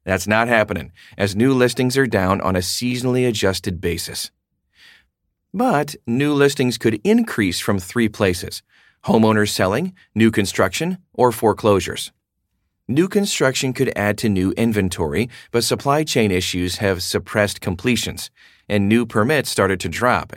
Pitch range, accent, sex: 95-135 Hz, American, male